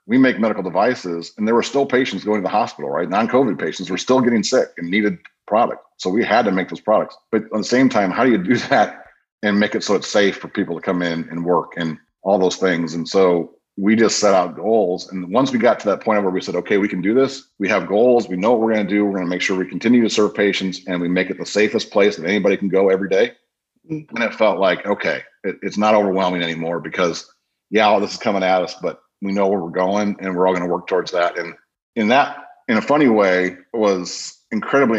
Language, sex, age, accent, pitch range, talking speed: English, male, 40-59, American, 90-110 Hz, 260 wpm